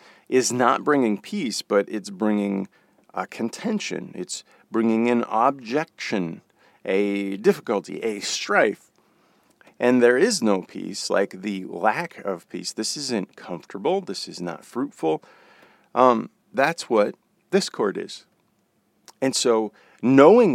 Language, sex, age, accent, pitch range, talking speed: English, male, 40-59, American, 100-120 Hz, 125 wpm